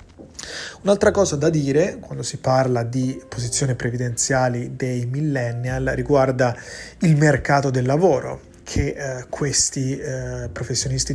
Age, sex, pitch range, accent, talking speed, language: 30-49, male, 125-145 Hz, native, 120 wpm, Italian